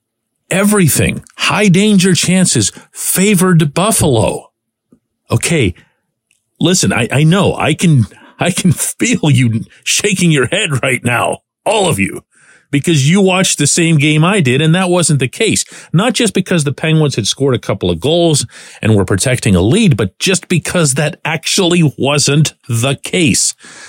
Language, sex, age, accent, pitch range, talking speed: English, male, 50-69, American, 115-170 Hz, 155 wpm